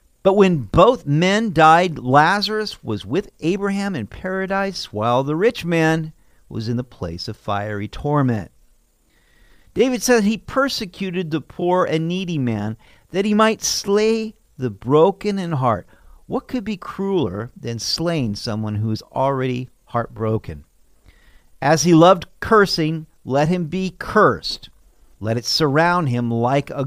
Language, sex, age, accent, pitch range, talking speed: English, male, 50-69, American, 115-185 Hz, 145 wpm